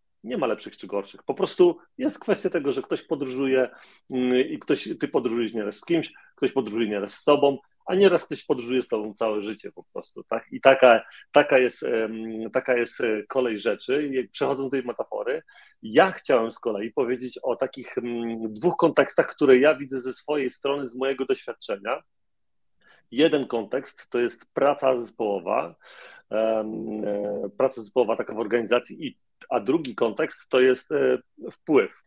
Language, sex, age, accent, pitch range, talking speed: Polish, male, 40-59, native, 115-145 Hz, 155 wpm